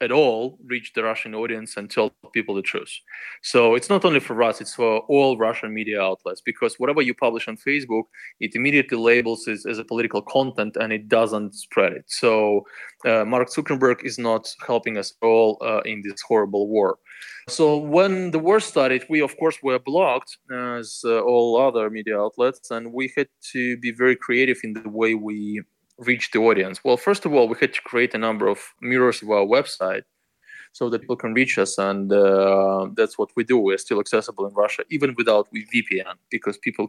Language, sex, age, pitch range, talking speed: Czech, male, 20-39, 110-140 Hz, 200 wpm